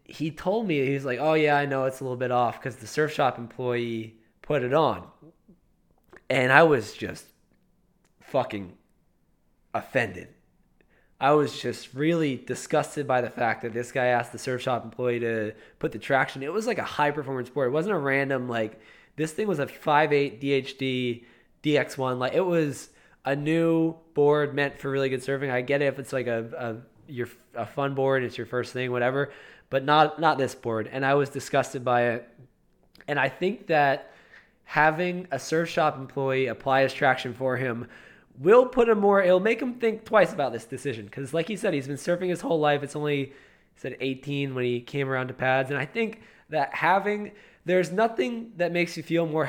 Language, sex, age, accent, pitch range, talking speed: English, male, 20-39, American, 125-160 Hz, 200 wpm